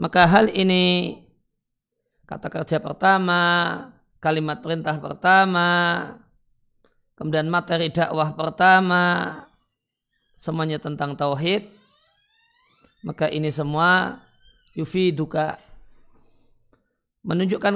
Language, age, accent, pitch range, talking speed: Indonesian, 40-59, native, 155-175 Hz, 75 wpm